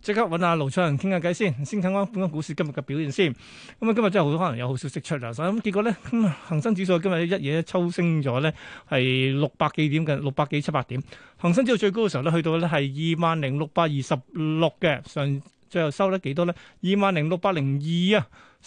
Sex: male